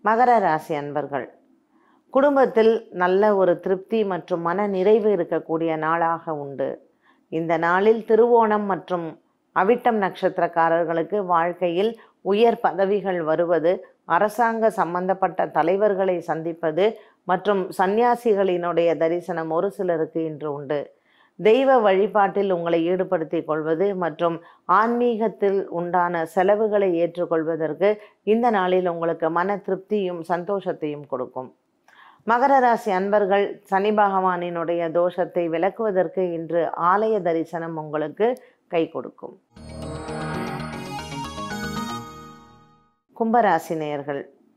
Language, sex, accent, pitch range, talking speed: Tamil, female, native, 165-210 Hz, 85 wpm